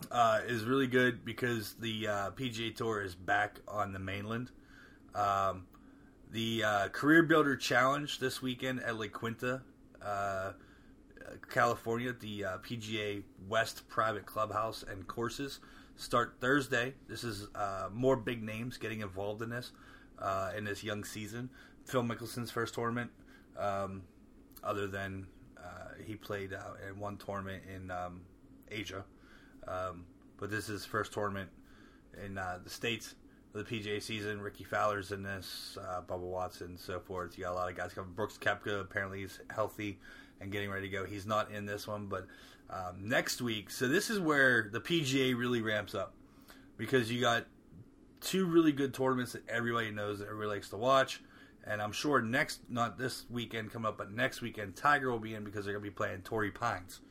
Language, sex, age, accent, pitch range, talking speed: English, male, 30-49, American, 100-120 Hz, 175 wpm